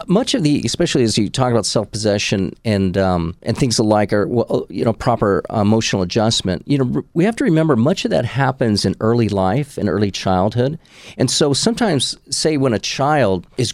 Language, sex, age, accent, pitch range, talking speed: English, male, 40-59, American, 110-145 Hz, 190 wpm